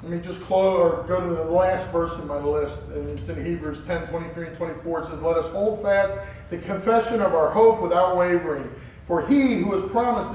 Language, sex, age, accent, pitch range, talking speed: English, male, 40-59, American, 165-225 Hz, 225 wpm